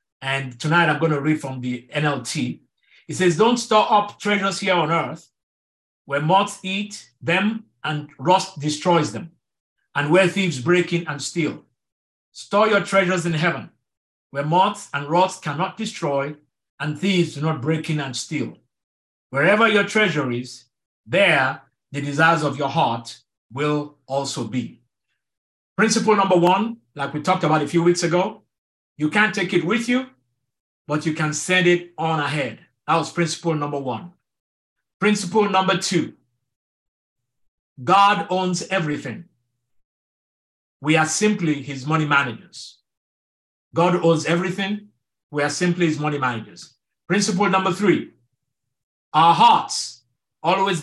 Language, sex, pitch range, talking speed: English, male, 140-185 Hz, 140 wpm